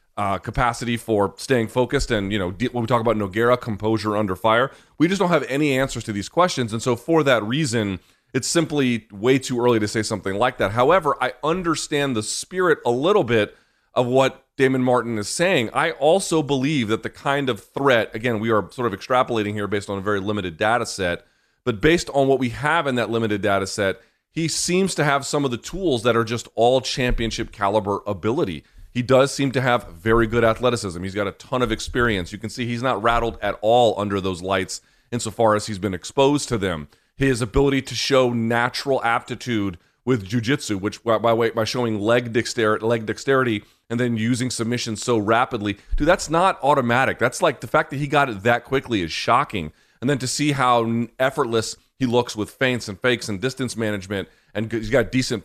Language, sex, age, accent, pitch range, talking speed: English, male, 30-49, American, 105-130 Hz, 205 wpm